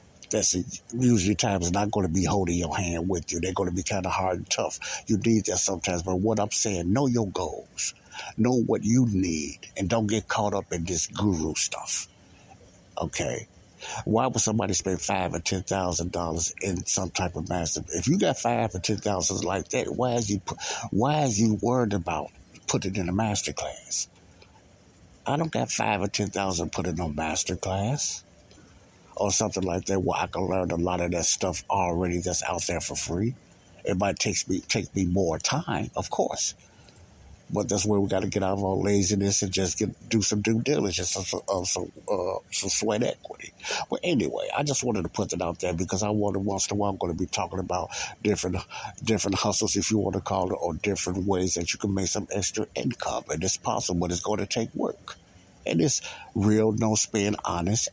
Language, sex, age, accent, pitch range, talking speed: English, male, 60-79, American, 90-110 Hz, 210 wpm